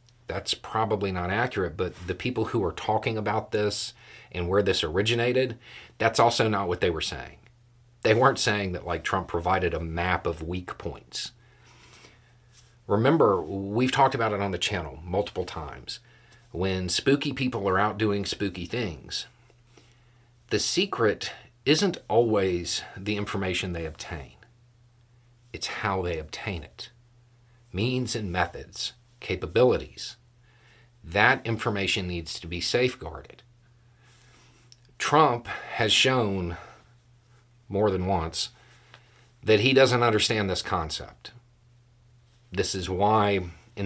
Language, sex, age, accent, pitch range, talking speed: English, male, 40-59, American, 95-120 Hz, 125 wpm